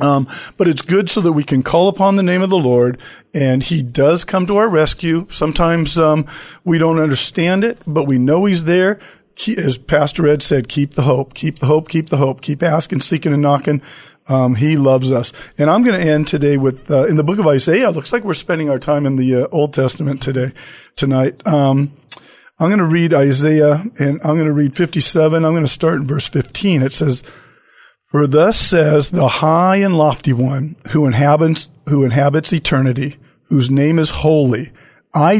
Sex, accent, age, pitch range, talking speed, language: male, American, 50-69, 140-170 Hz, 205 wpm, English